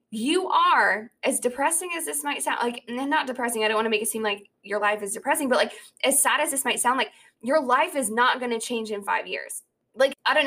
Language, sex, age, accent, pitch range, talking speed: English, female, 20-39, American, 225-310 Hz, 260 wpm